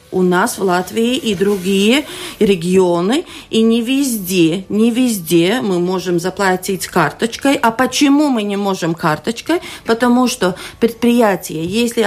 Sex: female